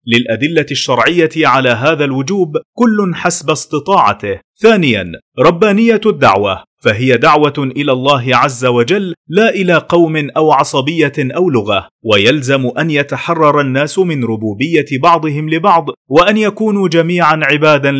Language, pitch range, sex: Arabic, 140-185 Hz, male